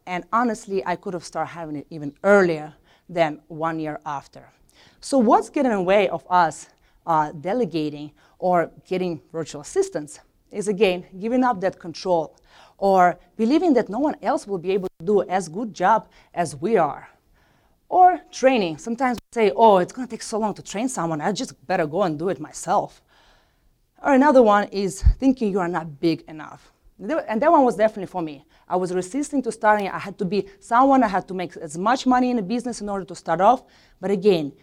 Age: 30-49